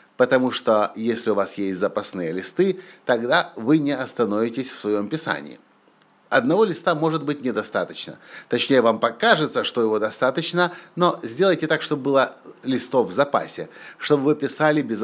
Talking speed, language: 150 wpm, Russian